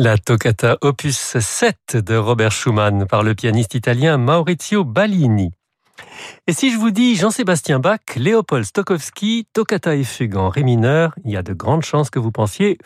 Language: French